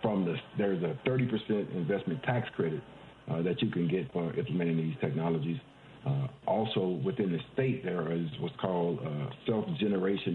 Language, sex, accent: English, male, American